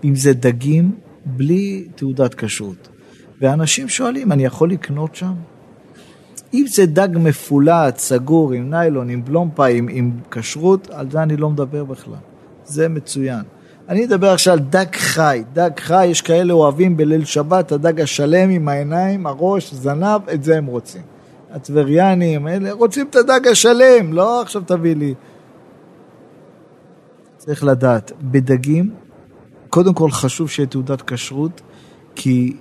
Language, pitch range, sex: Hebrew, 135-175 Hz, male